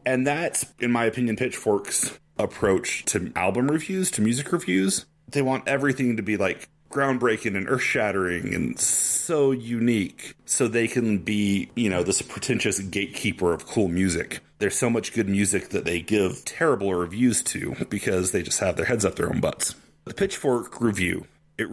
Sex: male